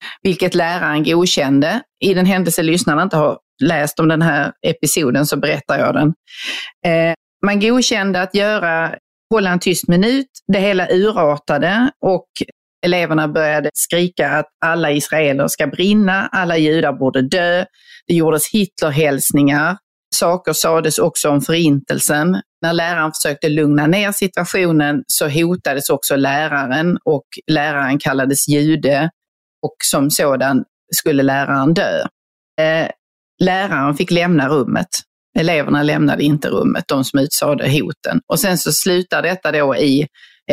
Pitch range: 150-185 Hz